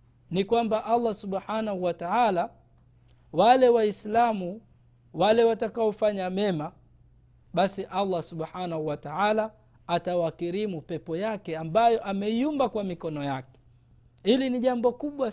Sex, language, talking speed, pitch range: male, Swahili, 110 wpm, 170-235 Hz